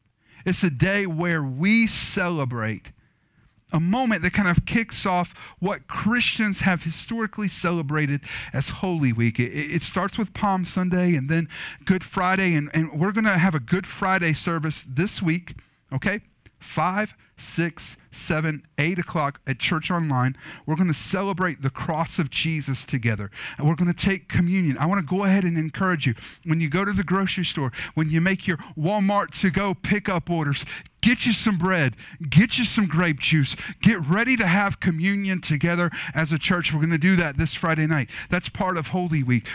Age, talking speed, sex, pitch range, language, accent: 40-59, 185 wpm, male, 150-190 Hz, English, American